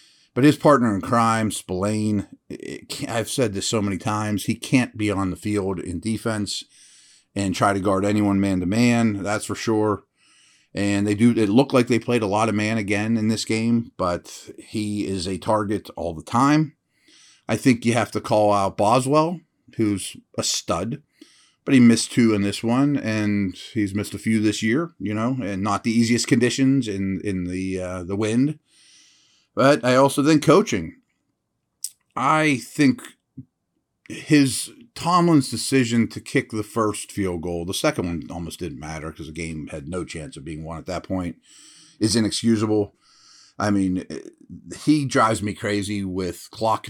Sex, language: male, English